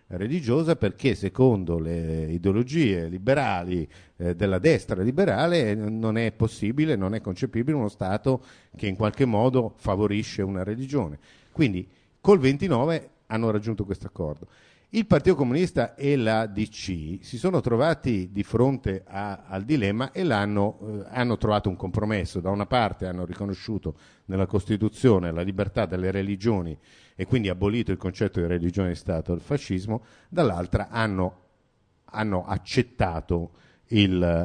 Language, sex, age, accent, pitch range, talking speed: Italian, male, 50-69, native, 90-115 Hz, 140 wpm